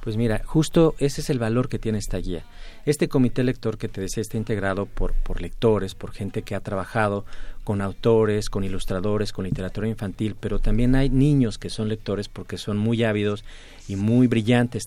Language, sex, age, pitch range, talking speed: Spanish, male, 40-59, 95-120 Hz, 195 wpm